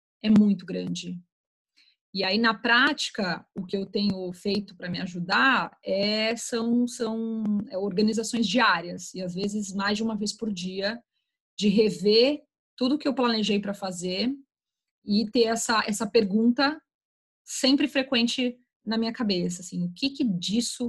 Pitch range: 185-225 Hz